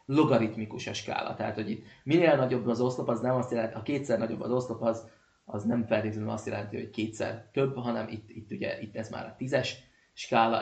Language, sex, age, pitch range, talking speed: Hungarian, male, 30-49, 105-120 Hz, 215 wpm